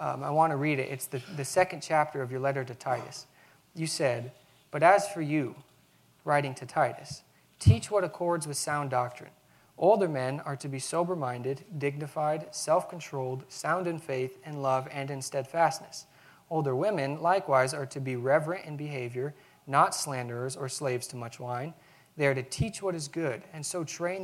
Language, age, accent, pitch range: English, 30-49, American, 130-160 Hz